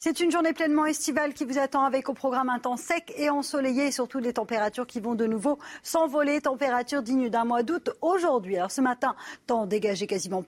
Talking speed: 210 wpm